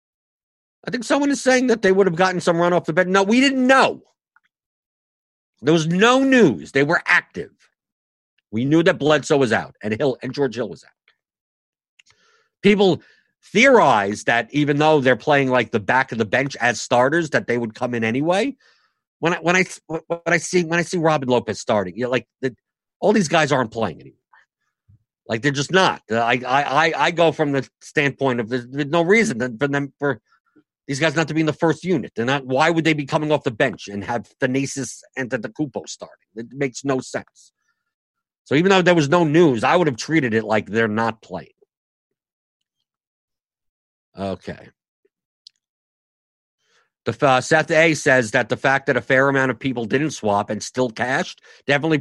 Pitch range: 125-175 Hz